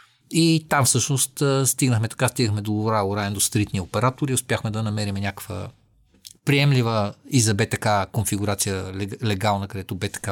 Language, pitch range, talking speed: English, 110-145 Hz, 130 wpm